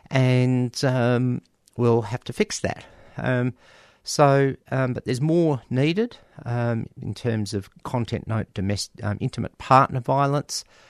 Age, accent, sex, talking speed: 50-69, Australian, male, 140 wpm